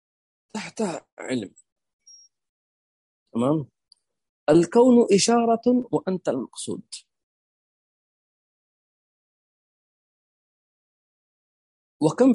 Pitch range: 150-235 Hz